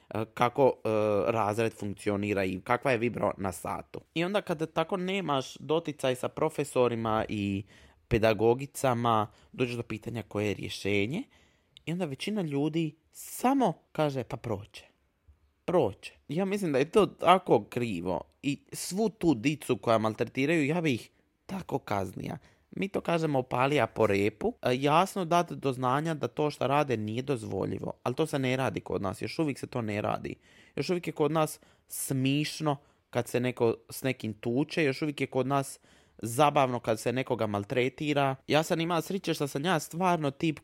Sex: male